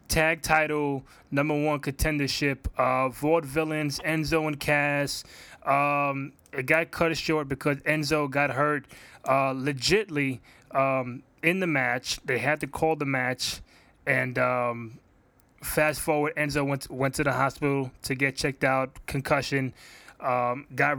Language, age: English, 20-39